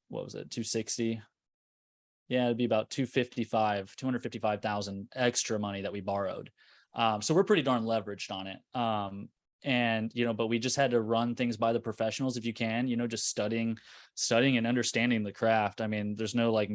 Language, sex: English, male